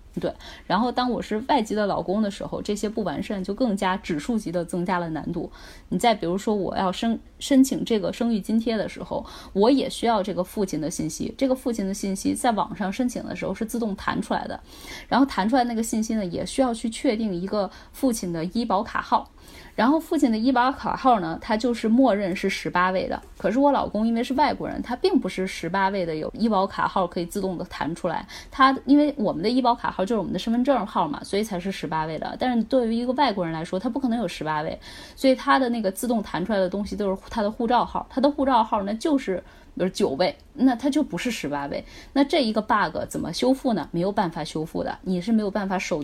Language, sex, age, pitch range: Chinese, female, 10-29, 185-250 Hz